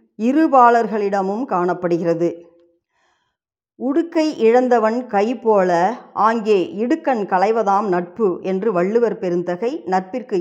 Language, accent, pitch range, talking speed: Tamil, native, 185-260 Hz, 75 wpm